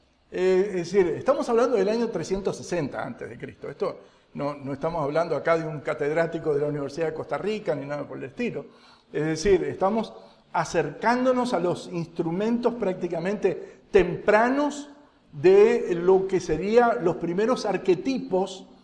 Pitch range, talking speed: 160-230 Hz, 140 wpm